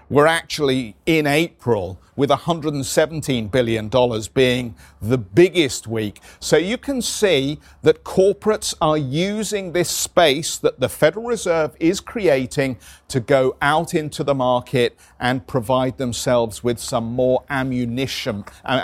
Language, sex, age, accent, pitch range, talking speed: English, male, 50-69, British, 120-155 Hz, 130 wpm